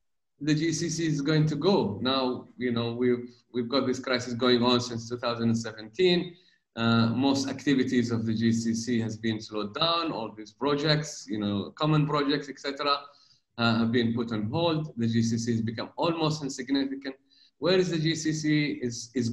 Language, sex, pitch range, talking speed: English, male, 115-155 Hz, 170 wpm